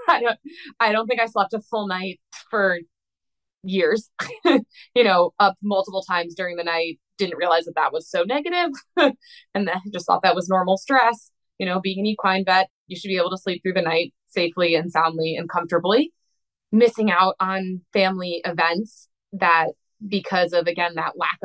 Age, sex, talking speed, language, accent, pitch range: 20-39, female, 180 wpm, English, American, 175-215 Hz